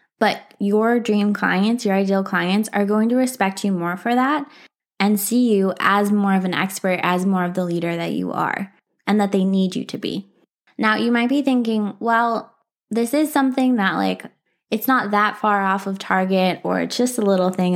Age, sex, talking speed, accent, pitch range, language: 20-39, female, 210 wpm, American, 180-220 Hz, English